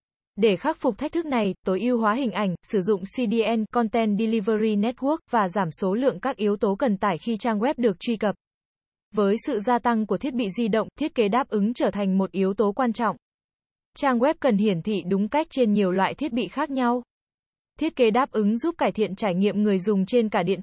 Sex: female